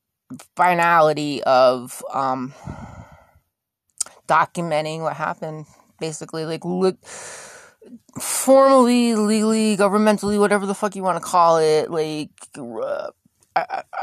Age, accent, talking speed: 20-39, American, 95 wpm